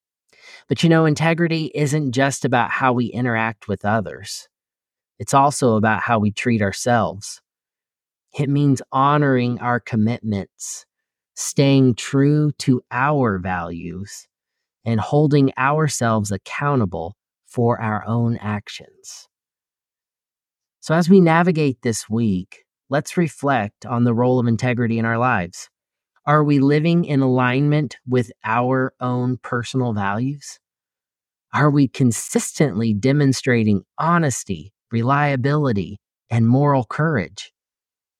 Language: English